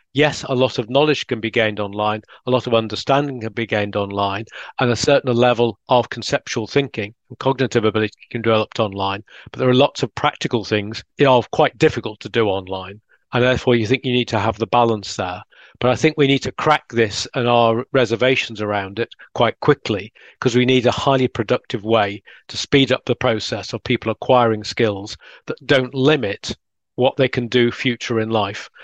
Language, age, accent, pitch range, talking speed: English, 40-59, British, 110-130 Hz, 200 wpm